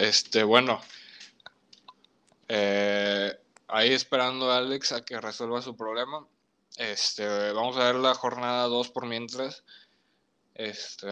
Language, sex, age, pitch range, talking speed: Spanish, male, 20-39, 110-130 Hz, 120 wpm